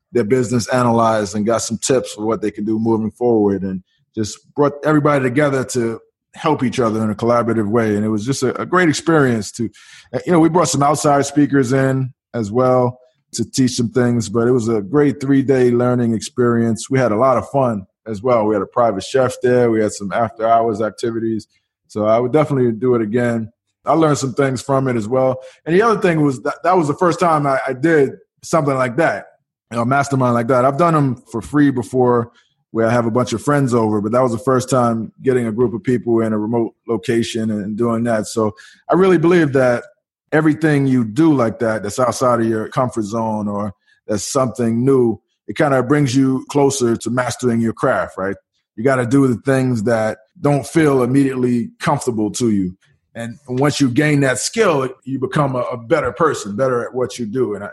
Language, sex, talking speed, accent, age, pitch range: English, male, 215 wpm, American, 20-39, 115-140 Hz